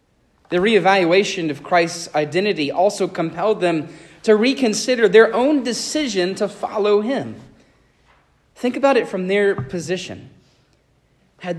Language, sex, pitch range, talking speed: English, male, 160-215 Hz, 120 wpm